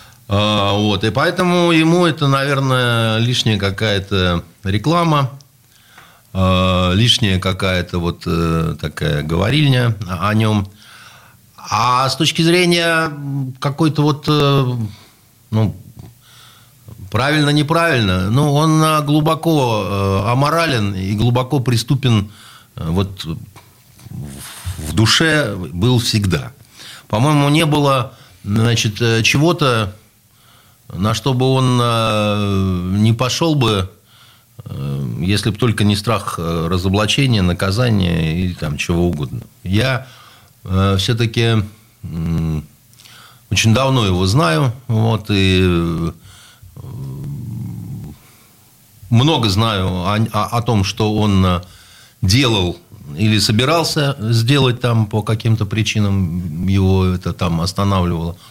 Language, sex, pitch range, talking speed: Russian, male, 95-130 Hz, 90 wpm